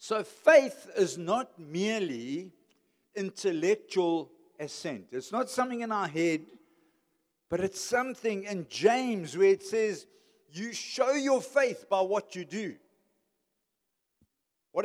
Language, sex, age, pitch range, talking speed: English, male, 60-79, 135-220 Hz, 120 wpm